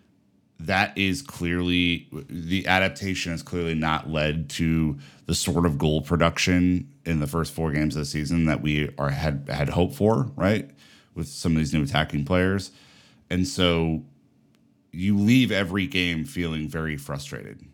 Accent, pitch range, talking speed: American, 75-95 Hz, 160 wpm